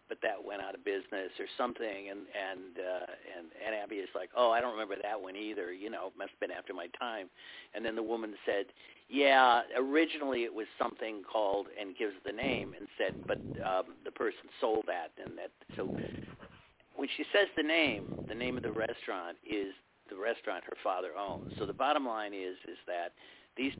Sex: male